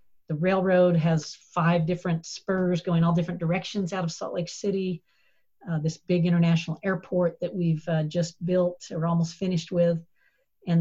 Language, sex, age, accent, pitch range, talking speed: English, female, 50-69, American, 160-175 Hz, 165 wpm